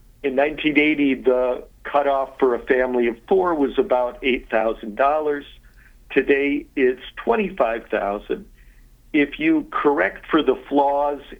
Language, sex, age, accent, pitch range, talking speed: English, male, 50-69, American, 120-150 Hz, 110 wpm